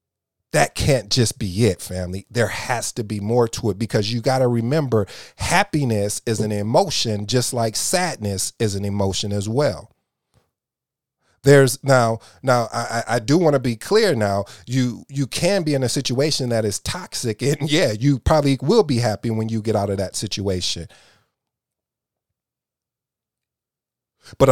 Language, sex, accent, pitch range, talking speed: English, male, American, 105-130 Hz, 160 wpm